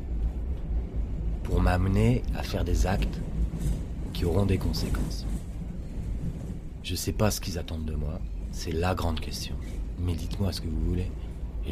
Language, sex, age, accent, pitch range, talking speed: French, male, 40-59, French, 75-90 Hz, 155 wpm